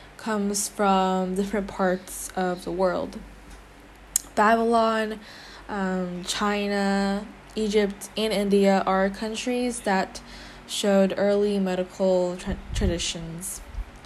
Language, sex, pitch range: Korean, female, 190-215 Hz